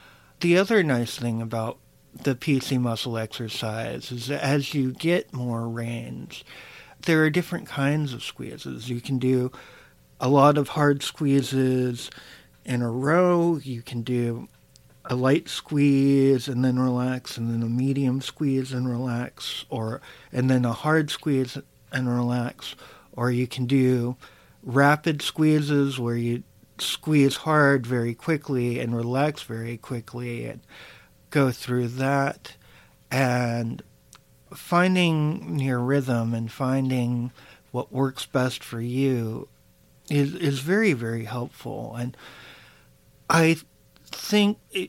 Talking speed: 130 wpm